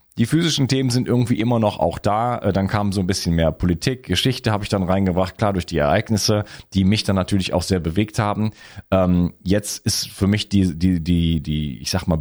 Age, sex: 40-59, male